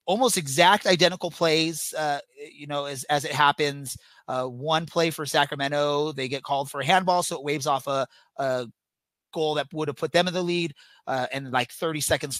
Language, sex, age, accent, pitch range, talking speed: English, male, 30-49, American, 130-155 Hz, 205 wpm